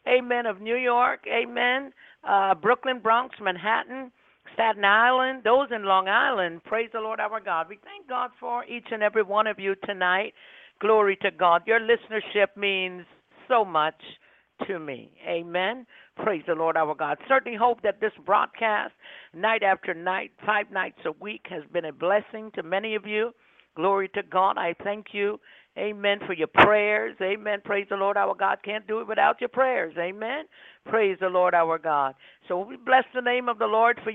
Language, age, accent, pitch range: English, 60-79, American, 190-235 Hz